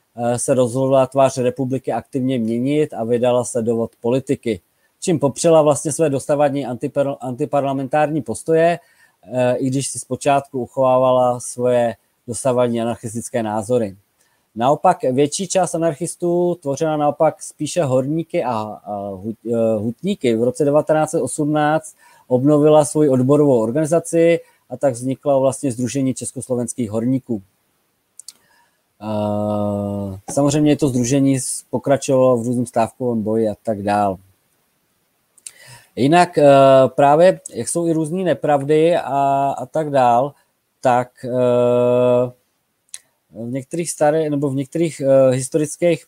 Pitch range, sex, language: 120-150 Hz, male, Czech